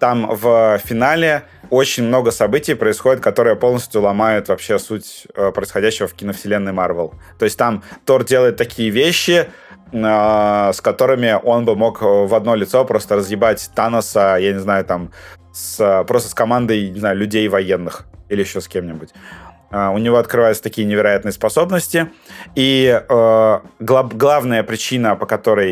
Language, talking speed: Russian, 155 wpm